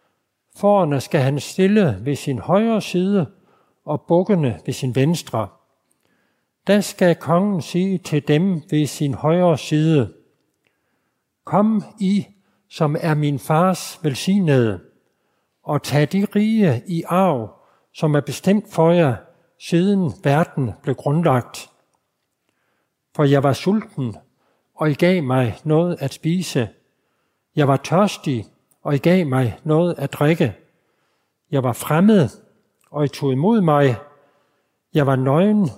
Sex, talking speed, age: male, 130 wpm, 60-79